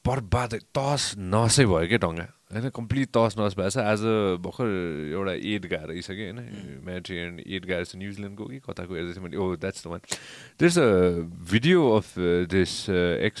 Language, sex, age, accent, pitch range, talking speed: English, male, 30-49, Indian, 95-125 Hz, 50 wpm